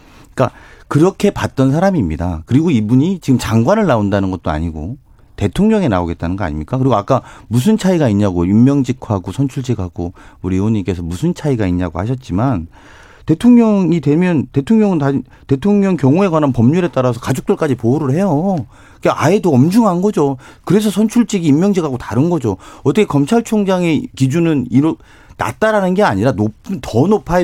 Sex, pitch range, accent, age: male, 105-175 Hz, native, 40-59